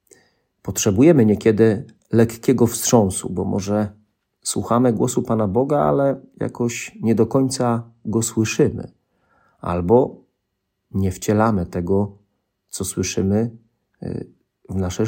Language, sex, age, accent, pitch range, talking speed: Polish, male, 40-59, native, 95-120 Hz, 100 wpm